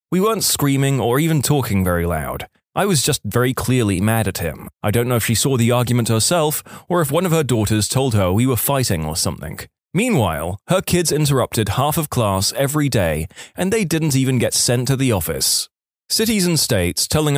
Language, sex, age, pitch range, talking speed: English, male, 20-39, 110-155 Hz, 205 wpm